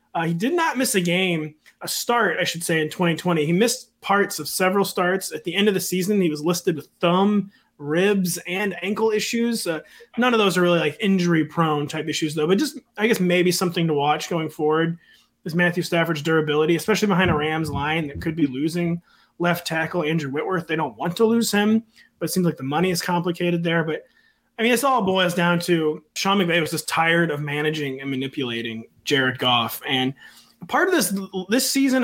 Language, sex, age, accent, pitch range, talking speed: English, male, 30-49, American, 160-200 Hz, 210 wpm